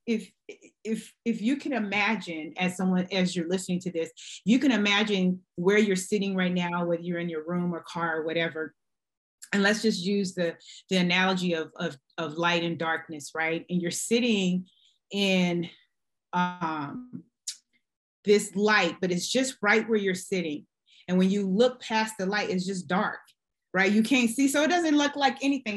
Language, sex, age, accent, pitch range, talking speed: English, female, 30-49, American, 185-240 Hz, 180 wpm